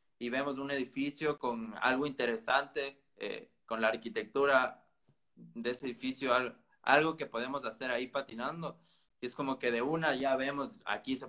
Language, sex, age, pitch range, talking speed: Spanish, male, 20-39, 115-140 Hz, 165 wpm